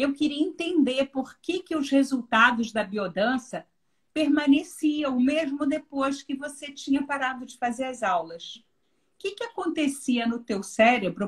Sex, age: female, 50-69